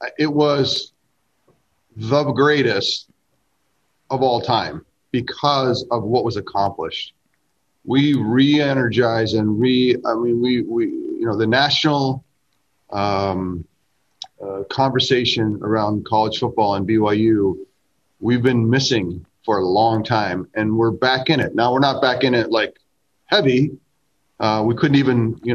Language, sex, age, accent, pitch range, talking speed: English, male, 40-59, American, 105-130 Hz, 135 wpm